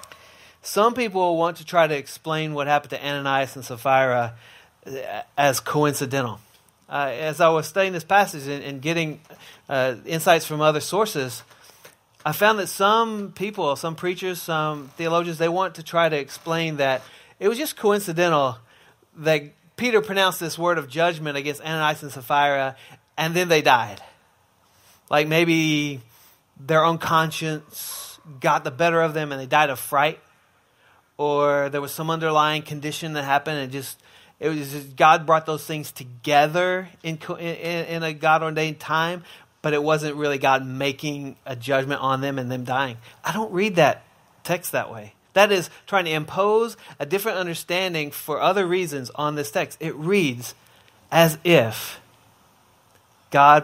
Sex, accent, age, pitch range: male, American, 30-49, 135-165 Hz